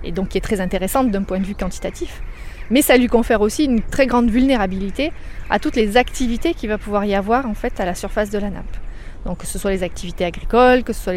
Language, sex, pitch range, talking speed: French, female, 195-245 Hz, 255 wpm